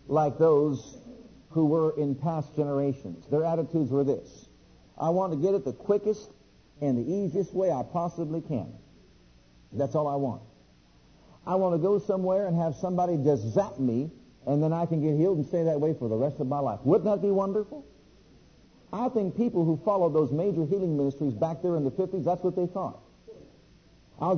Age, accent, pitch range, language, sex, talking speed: 50-69, American, 145-185 Hz, English, male, 195 wpm